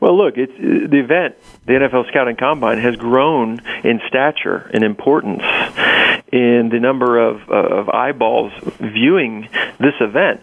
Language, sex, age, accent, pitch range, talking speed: English, male, 40-59, American, 120-140 Hz, 150 wpm